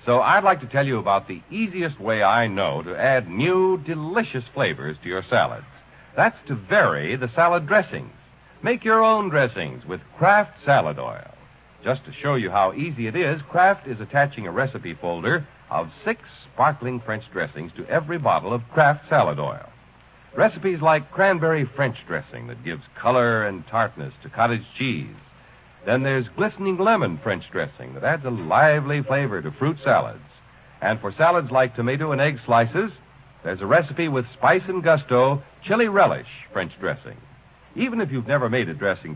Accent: American